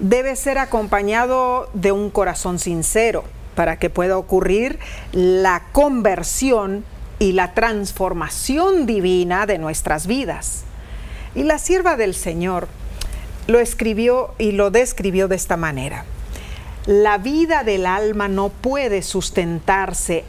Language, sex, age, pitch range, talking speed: Spanish, female, 40-59, 195-300 Hz, 120 wpm